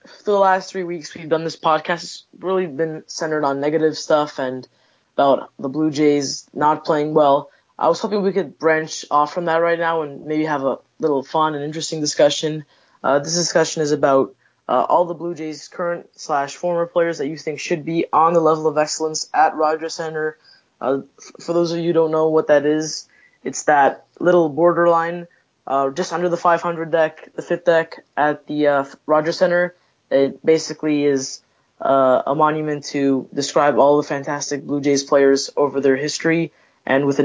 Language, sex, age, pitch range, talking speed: English, female, 20-39, 145-170 Hz, 190 wpm